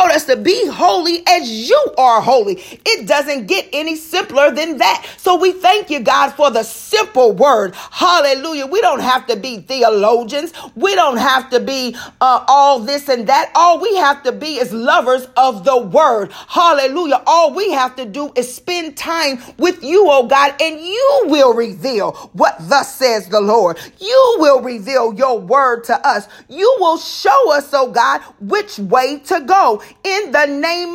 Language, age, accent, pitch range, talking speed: English, 40-59, American, 255-330 Hz, 180 wpm